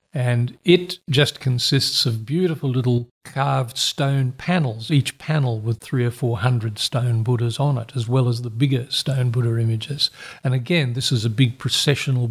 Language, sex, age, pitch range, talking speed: English, male, 50-69, 120-135 Hz, 175 wpm